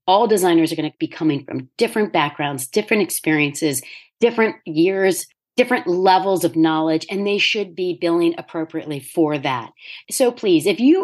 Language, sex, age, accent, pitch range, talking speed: English, female, 40-59, American, 165-220 Hz, 165 wpm